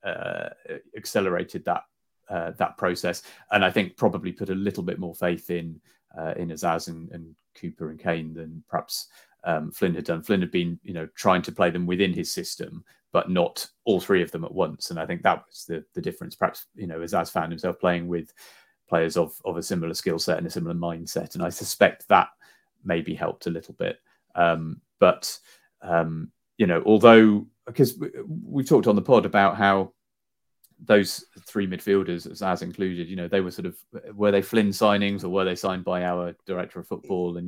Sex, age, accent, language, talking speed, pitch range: male, 30-49, British, English, 200 wpm, 85-100 Hz